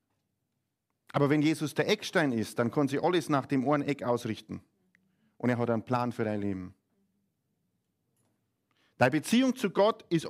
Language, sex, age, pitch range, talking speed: German, male, 50-69, 125-175 Hz, 165 wpm